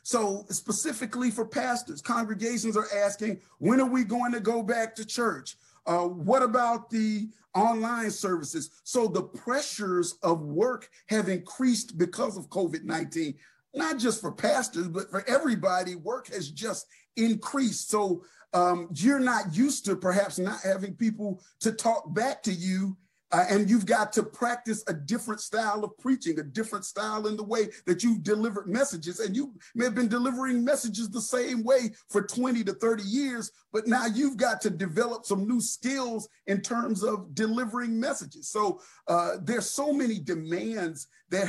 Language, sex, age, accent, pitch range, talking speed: English, male, 40-59, American, 190-240 Hz, 165 wpm